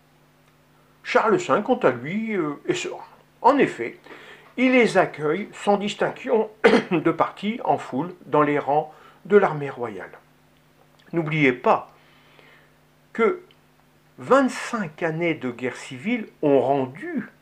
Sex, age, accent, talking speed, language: male, 60-79, French, 115 wpm, French